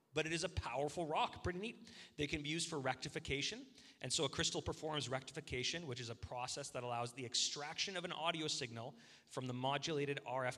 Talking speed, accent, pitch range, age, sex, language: 205 wpm, American, 120-165 Hz, 30-49, male, English